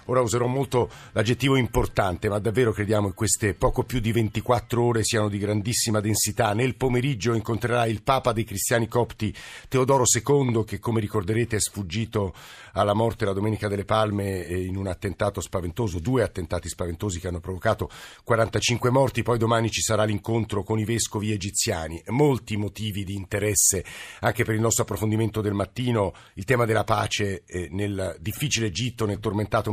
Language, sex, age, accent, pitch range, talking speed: Italian, male, 50-69, native, 105-120 Hz, 165 wpm